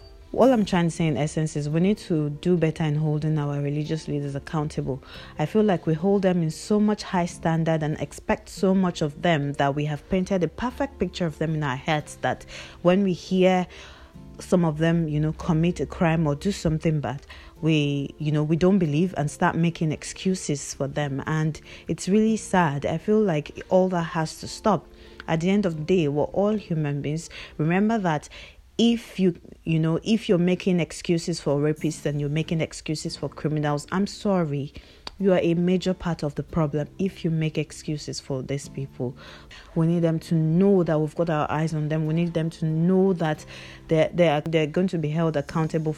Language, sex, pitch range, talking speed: English, female, 150-180 Hz, 210 wpm